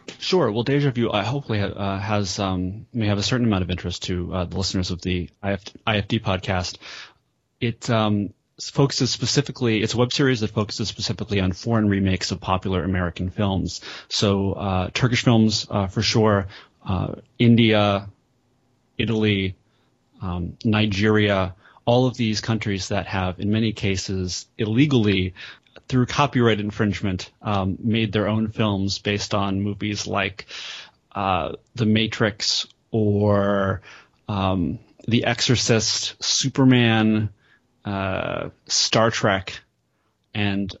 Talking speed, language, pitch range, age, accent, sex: 135 wpm, English, 100-115 Hz, 30-49, American, male